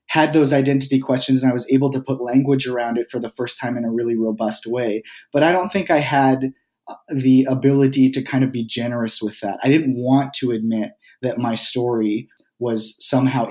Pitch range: 120-135 Hz